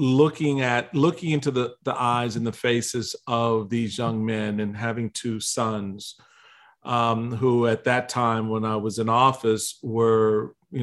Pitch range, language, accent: 115-145 Hz, English, American